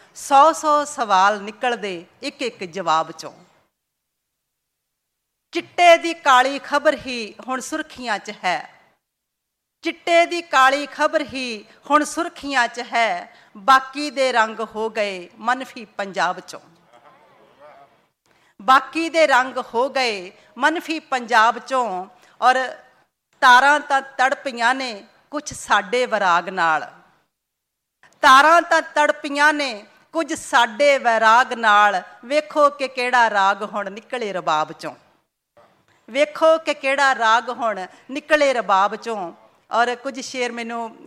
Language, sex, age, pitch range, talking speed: Punjabi, female, 50-69, 220-285 Hz, 110 wpm